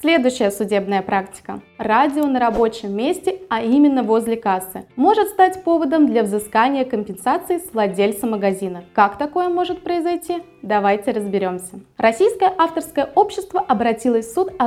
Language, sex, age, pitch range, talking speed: Russian, female, 20-39, 220-345 Hz, 135 wpm